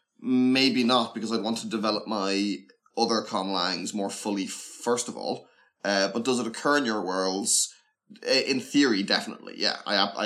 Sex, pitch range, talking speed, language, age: male, 100-125 Hz, 170 wpm, English, 20-39